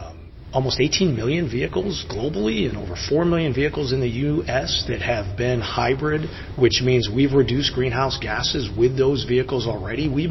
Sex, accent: male, American